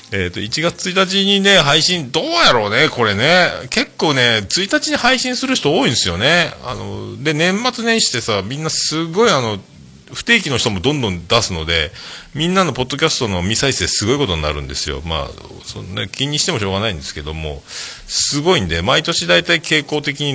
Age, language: 40-59, Japanese